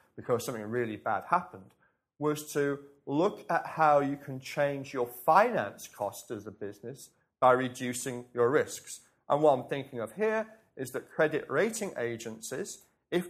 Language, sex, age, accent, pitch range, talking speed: English, male, 40-59, British, 120-150 Hz, 160 wpm